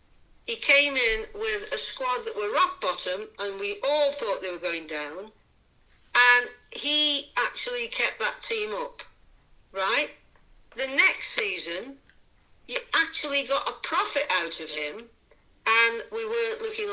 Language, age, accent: English, 60-79, British